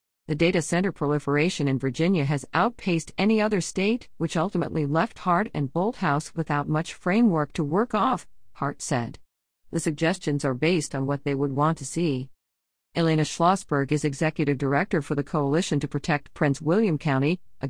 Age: 50-69